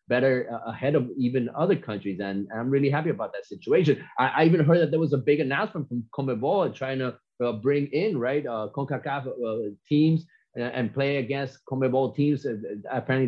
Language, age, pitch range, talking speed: English, 30-49, 120-145 Hz, 185 wpm